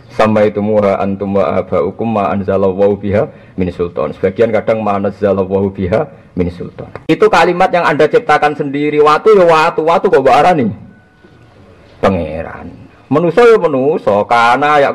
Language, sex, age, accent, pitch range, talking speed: Indonesian, male, 50-69, native, 100-155 Hz, 125 wpm